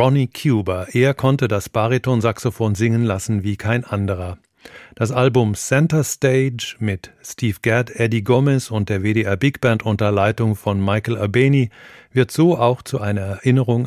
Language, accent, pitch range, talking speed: German, German, 105-130 Hz, 155 wpm